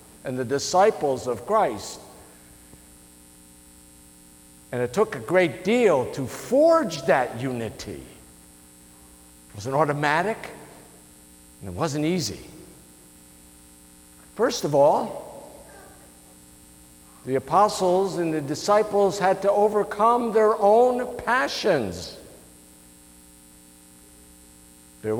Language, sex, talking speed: English, male, 90 wpm